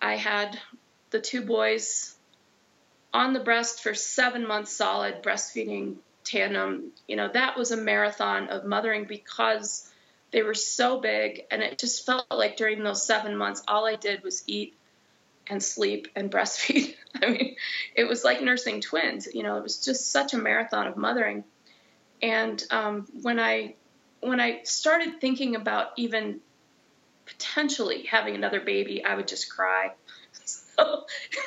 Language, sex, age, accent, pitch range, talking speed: English, female, 30-49, American, 205-250 Hz, 155 wpm